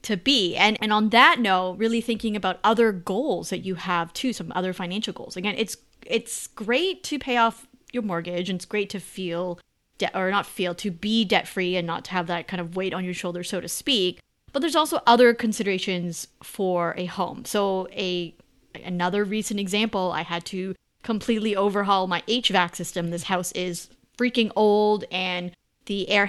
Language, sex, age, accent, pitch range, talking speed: English, female, 30-49, American, 180-220 Hz, 195 wpm